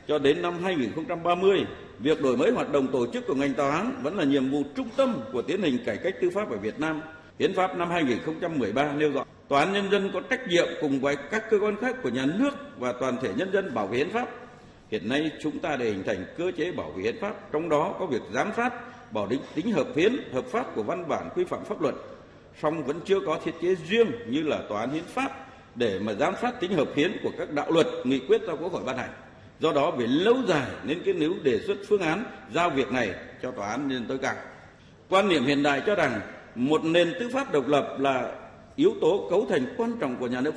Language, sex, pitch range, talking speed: Vietnamese, male, 150-245 Hz, 250 wpm